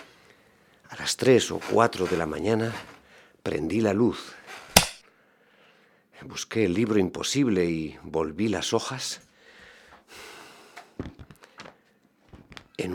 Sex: male